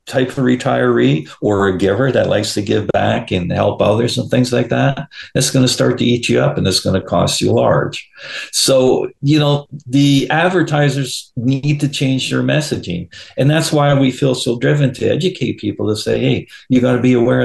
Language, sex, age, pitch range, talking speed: English, male, 50-69, 110-145 Hz, 210 wpm